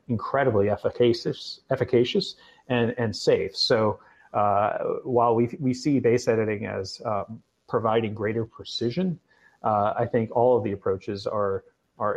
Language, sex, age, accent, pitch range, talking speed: English, male, 30-49, American, 100-120 Hz, 145 wpm